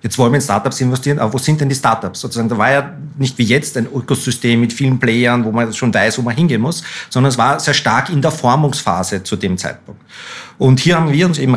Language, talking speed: German, 250 wpm